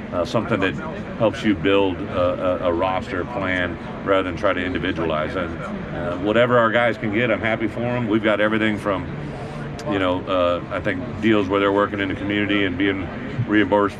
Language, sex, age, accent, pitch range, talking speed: English, male, 40-59, American, 85-105 Hz, 195 wpm